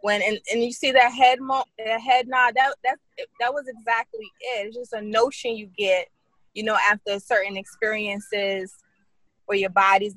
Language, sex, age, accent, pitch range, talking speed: English, female, 20-39, American, 190-245 Hz, 185 wpm